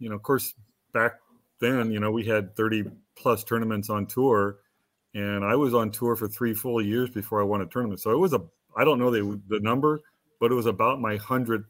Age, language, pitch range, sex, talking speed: 40-59, English, 100-120 Hz, male, 230 wpm